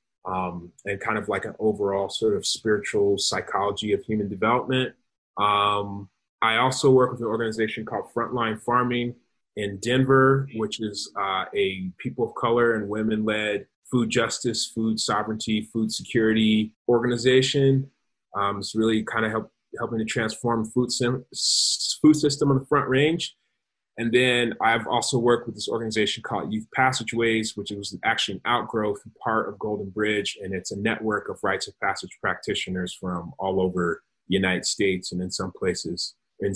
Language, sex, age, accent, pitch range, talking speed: English, male, 30-49, American, 105-130 Hz, 165 wpm